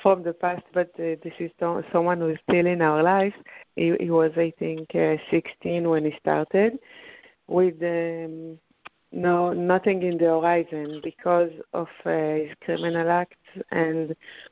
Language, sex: English, female